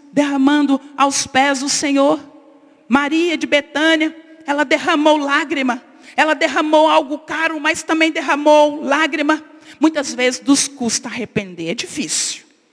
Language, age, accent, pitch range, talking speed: Portuguese, 50-69, Brazilian, 240-295 Hz, 125 wpm